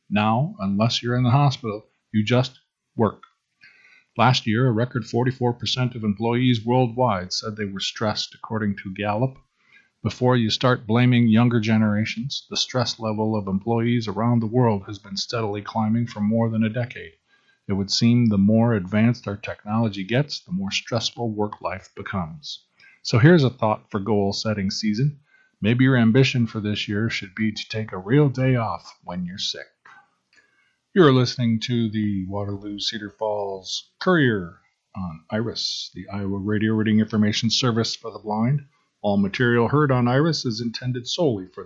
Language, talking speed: English, 165 wpm